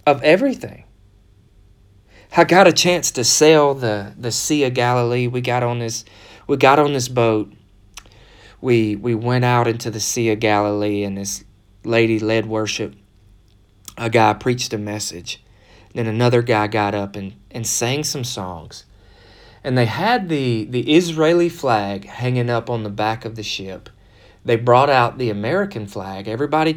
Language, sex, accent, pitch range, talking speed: English, male, American, 105-135 Hz, 165 wpm